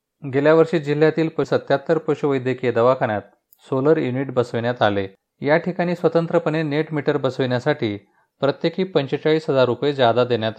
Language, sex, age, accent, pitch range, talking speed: Marathi, male, 30-49, native, 120-155 Hz, 120 wpm